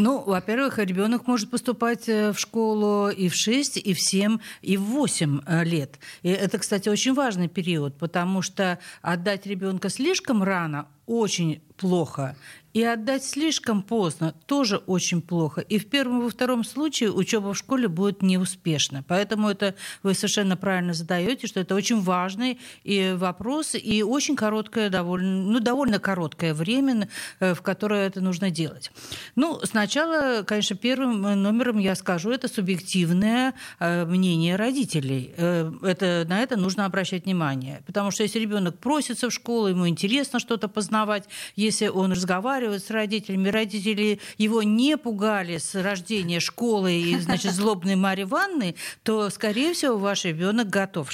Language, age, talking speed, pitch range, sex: Russian, 50-69, 145 wpm, 185-230 Hz, female